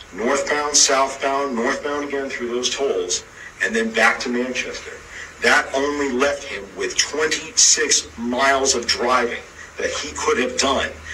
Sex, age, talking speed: male, 50-69, 145 wpm